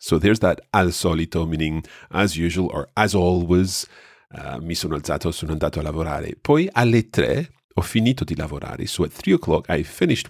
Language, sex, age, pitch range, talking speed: English, male, 40-59, 80-110 Hz, 185 wpm